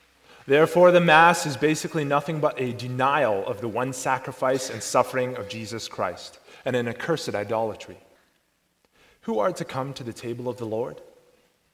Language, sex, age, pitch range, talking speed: English, male, 30-49, 125-175 Hz, 165 wpm